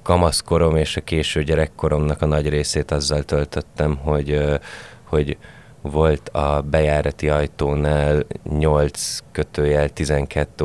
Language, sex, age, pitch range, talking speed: Hungarian, male, 20-39, 70-80 Hz, 105 wpm